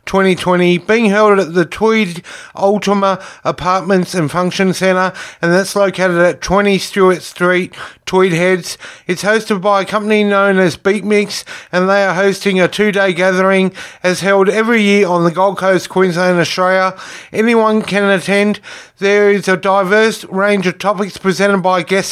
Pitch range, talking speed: 185-210 Hz, 165 wpm